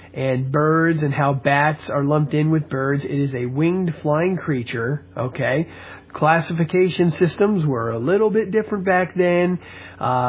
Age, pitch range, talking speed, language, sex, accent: 40-59, 130-175 Hz, 155 wpm, English, male, American